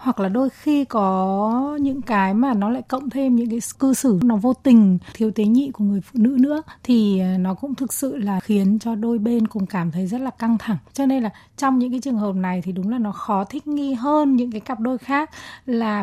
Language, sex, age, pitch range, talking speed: Vietnamese, female, 20-39, 210-275 Hz, 250 wpm